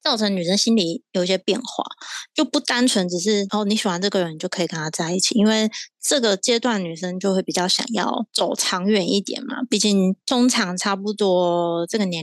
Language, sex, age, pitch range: Chinese, female, 20-39, 185-235 Hz